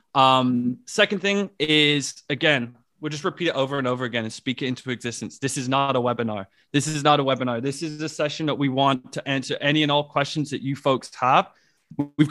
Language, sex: English, male